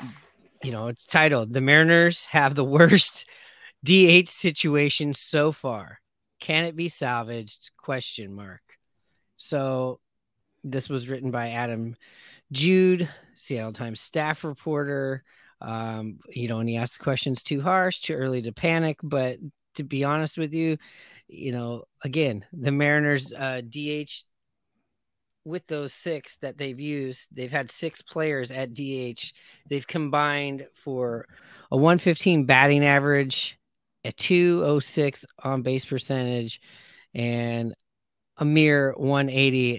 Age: 30-49